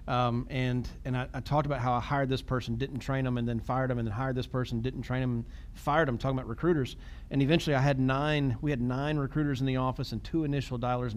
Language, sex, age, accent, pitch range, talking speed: English, male, 40-59, American, 130-185 Hz, 265 wpm